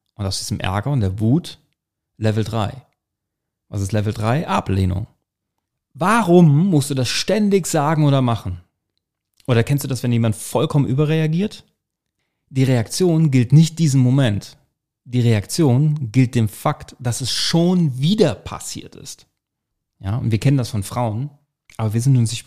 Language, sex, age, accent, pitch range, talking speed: German, male, 40-59, German, 110-155 Hz, 160 wpm